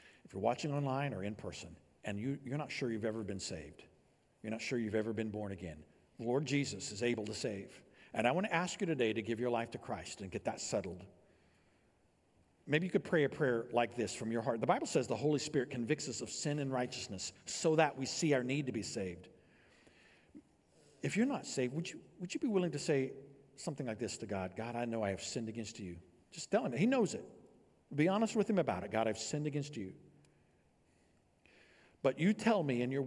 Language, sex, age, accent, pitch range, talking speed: English, male, 50-69, American, 110-145 Hz, 230 wpm